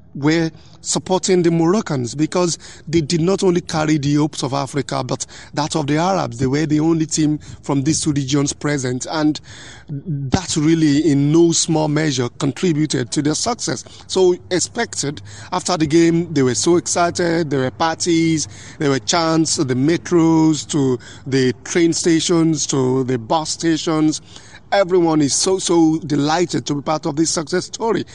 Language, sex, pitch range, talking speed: English, male, 140-165 Hz, 165 wpm